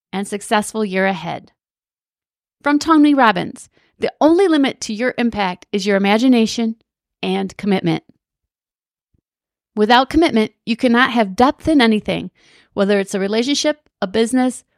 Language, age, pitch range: English, 30-49, 195-255 Hz